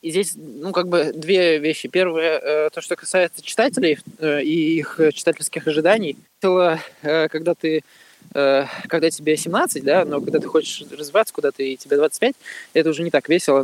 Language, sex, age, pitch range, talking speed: Russian, male, 20-39, 145-180 Hz, 180 wpm